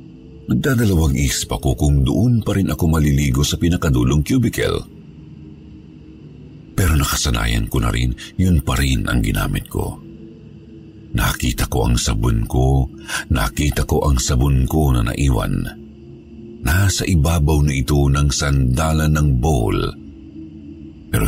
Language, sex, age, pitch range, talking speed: Filipino, male, 50-69, 70-80 Hz, 125 wpm